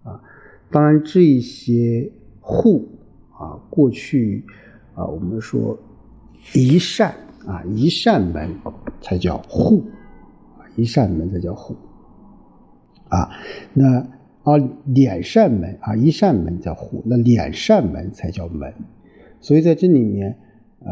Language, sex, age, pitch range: Chinese, male, 50-69, 100-135 Hz